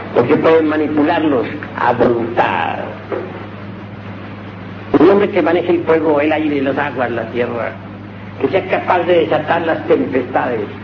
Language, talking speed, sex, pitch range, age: Spanish, 135 wpm, male, 100-155 Hz, 60-79